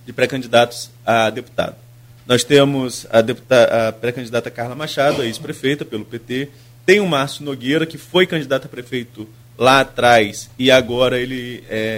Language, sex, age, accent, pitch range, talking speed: Portuguese, male, 20-39, Brazilian, 125-170 Hz, 150 wpm